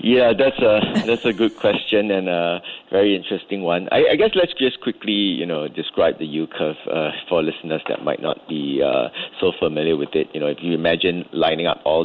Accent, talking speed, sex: Malaysian, 220 wpm, male